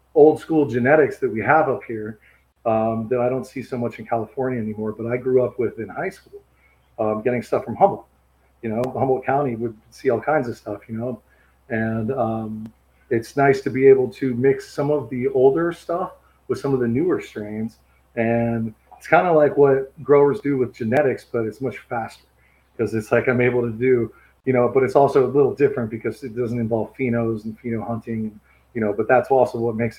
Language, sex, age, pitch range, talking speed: English, male, 30-49, 110-130 Hz, 215 wpm